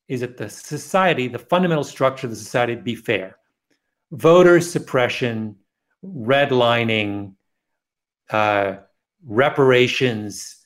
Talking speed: 100 wpm